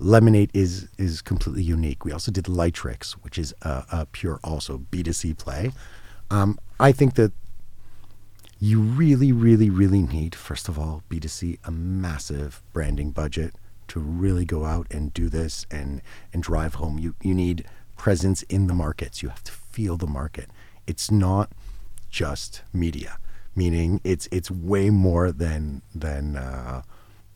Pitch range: 85-105 Hz